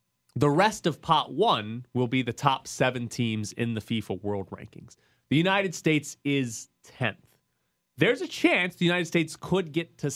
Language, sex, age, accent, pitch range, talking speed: English, male, 30-49, American, 105-140 Hz, 175 wpm